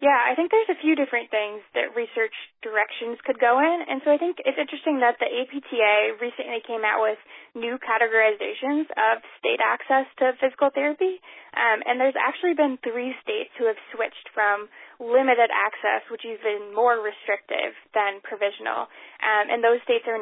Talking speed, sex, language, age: 180 wpm, female, English, 10-29